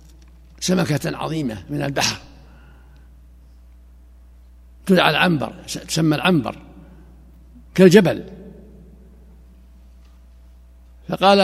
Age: 60-79